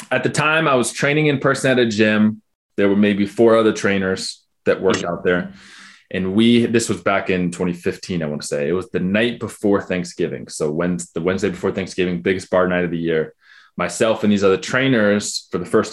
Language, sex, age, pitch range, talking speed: English, male, 20-39, 90-115 Hz, 215 wpm